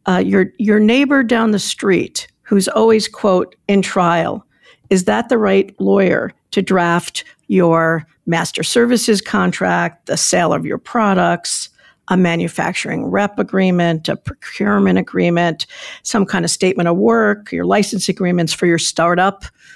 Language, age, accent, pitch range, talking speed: English, 50-69, American, 175-205 Hz, 145 wpm